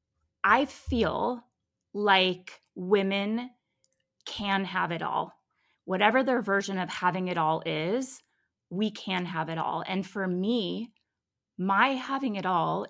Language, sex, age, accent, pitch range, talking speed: English, female, 20-39, American, 165-205 Hz, 130 wpm